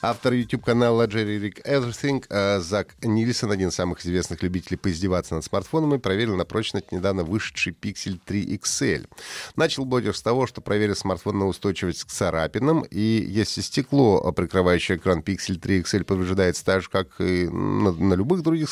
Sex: male